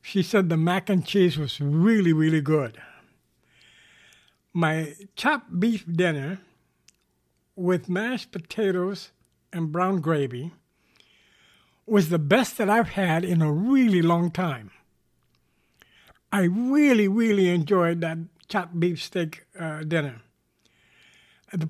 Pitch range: 160-225 Hz